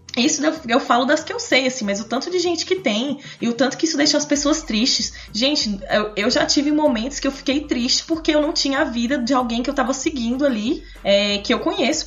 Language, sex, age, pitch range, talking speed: Portuguese, female, 20-39, 220-295 Hz, 250 wpm